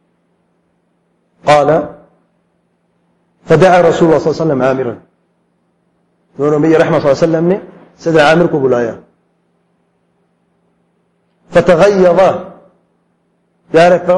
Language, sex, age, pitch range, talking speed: English, male, 50-69, 165-200 Hz, 90 wpm